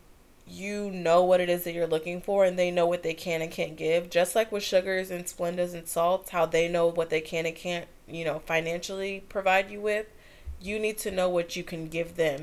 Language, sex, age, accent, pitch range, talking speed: English, female, 20-39, American, 165-195 Hz, 235 wpm